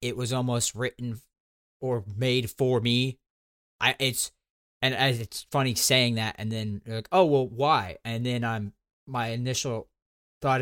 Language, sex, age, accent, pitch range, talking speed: English, male, 20-39, American, 100-130 Hz, 165 wpm